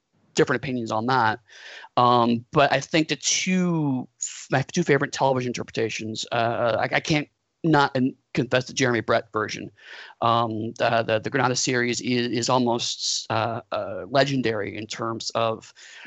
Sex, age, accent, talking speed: male, 30-49, American, 150 wpm